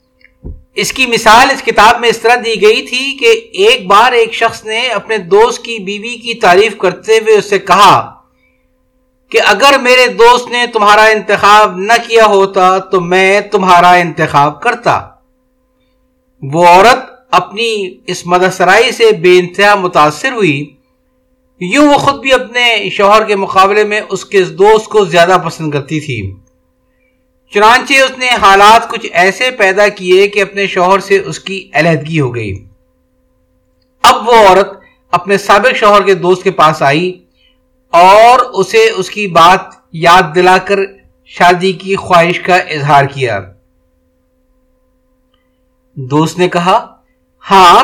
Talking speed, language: 145 wpm, Urdu